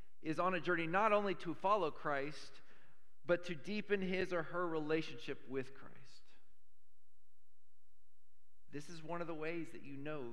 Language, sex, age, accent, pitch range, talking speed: English, male, 40-59, American, 125-205 Hz, 155 wpm